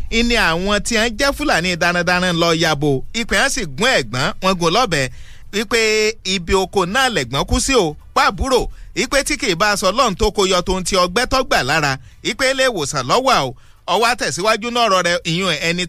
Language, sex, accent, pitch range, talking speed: English, male, Nigerian, 155-235 Hz, 165 wpm